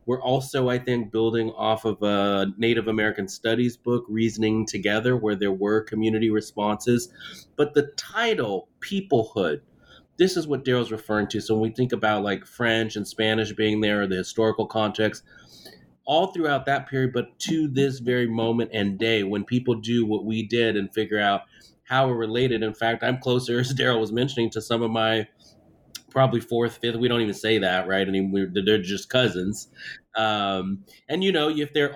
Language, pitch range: English, 105-125 Hz